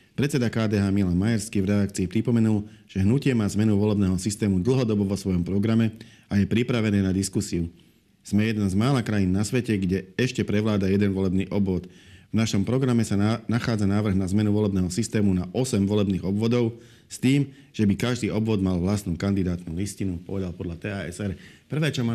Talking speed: 175 wpm